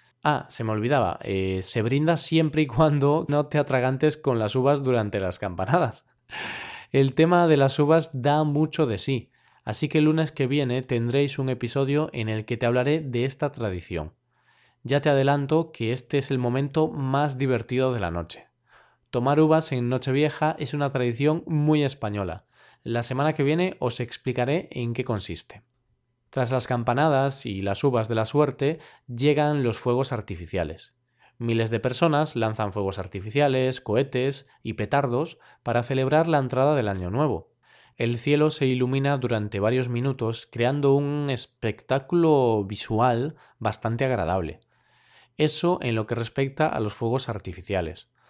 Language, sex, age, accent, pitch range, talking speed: Spanish, male, 20-39, Spanish, 115-145 Hz, 160 wpm